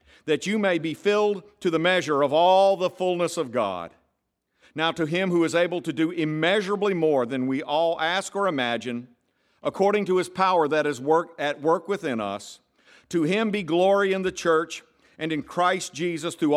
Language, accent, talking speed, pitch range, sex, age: English, American, 190 wpm, 155-195 Hz, male, 50-69